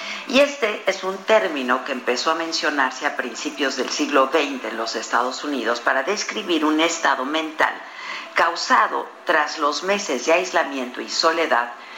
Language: Spanish